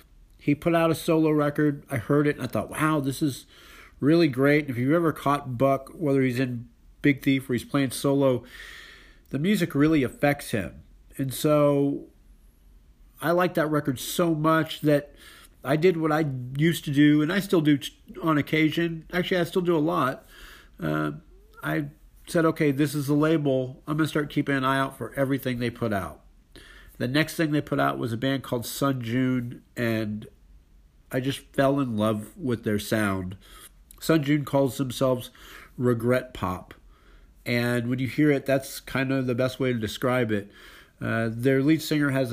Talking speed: 185 wpm